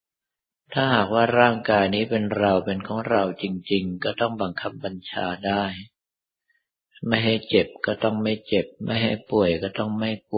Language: Thai